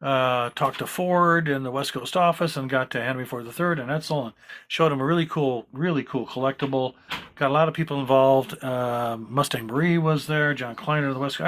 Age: 50-69